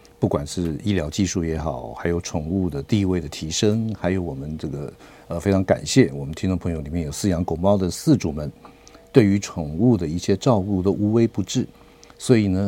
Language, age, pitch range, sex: Chinese, 50-69, 80-105 Hz, male